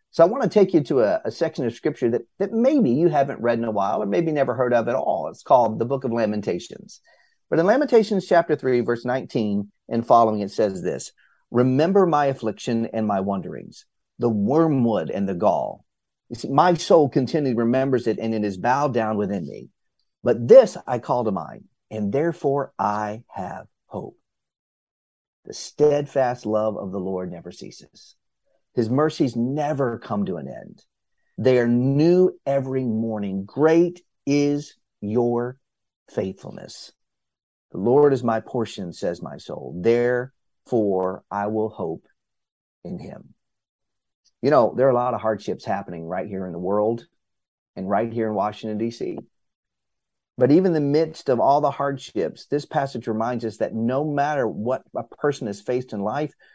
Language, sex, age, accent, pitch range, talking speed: English, male, 40-59, American, 110-145 Hz, 170 wpm